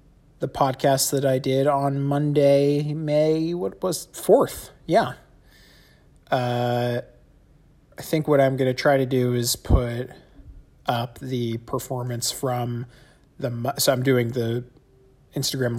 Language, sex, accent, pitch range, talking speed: English, male, American, 115-140 Hz, 130 wpm